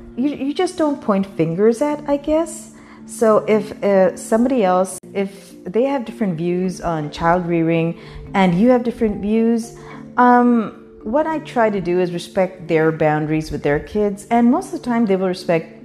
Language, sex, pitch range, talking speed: English, female, 150-210 Hz, 180 wpm